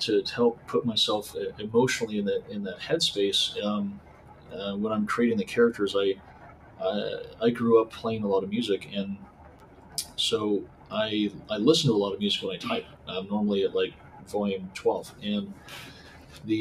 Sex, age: male, 30-49